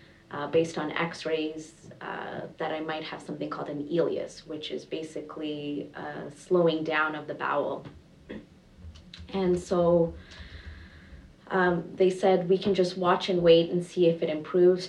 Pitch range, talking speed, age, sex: 155-180 Hz, 150 wpm, 30-49, female